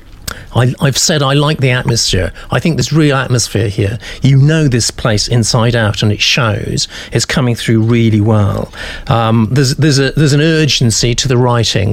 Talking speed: 185 wpm